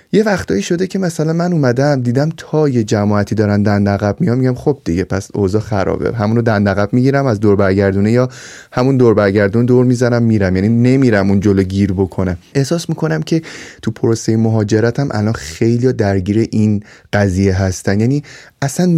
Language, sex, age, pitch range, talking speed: Persian, male, 30-49, 105-130 Hz, 170 wpm